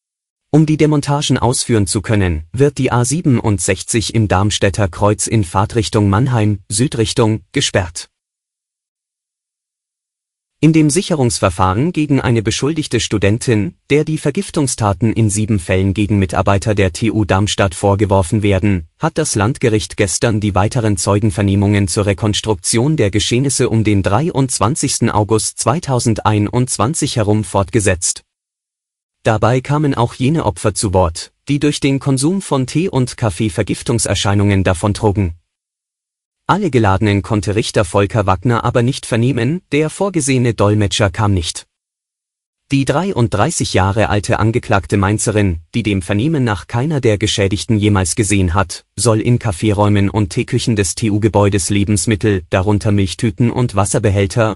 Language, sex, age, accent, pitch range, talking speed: German, male, 30-49, German, 100-125 Hz, 125 wpm